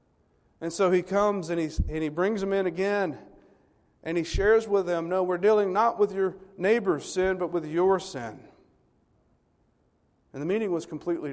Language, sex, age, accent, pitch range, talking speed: English, male, 40-59, American, 155-195 Hz, 175 wpm